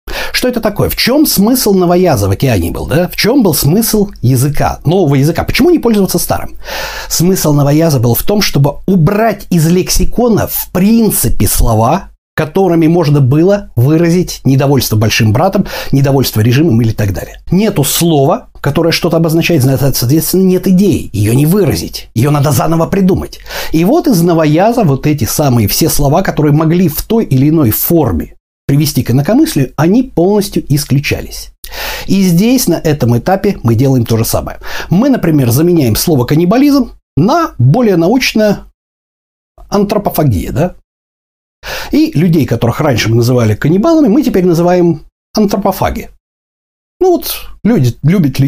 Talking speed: 145 wpm